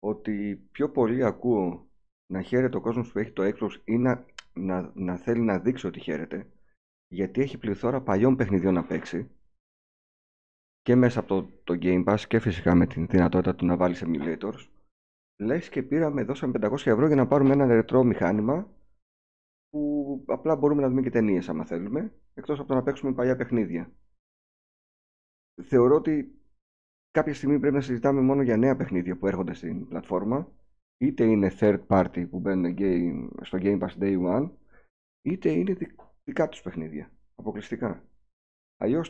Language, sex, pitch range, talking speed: Greek, male, 90-130 Hz, 160 wpm